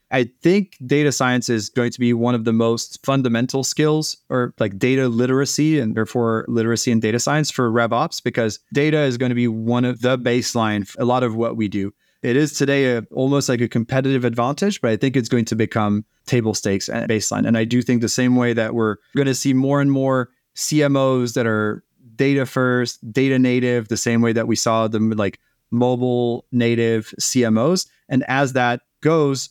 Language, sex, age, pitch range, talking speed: English, male, 30-49, 115-135 Hz, 205 wpm